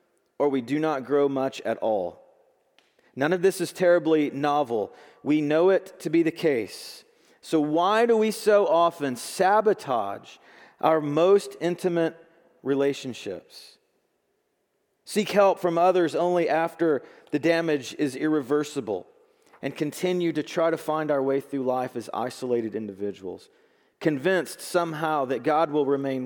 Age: 40-59